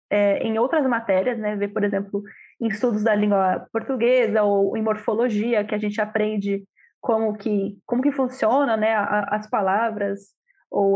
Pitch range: 215-275 Hz